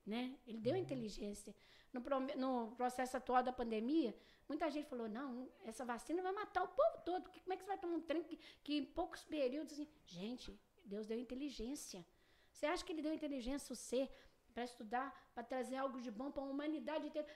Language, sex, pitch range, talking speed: Portuguese, female, 235-310 Hz, 205 wpm